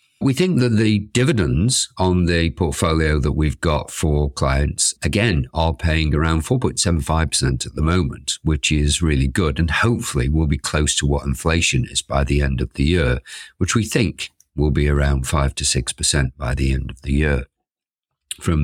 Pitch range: 70-90 Hz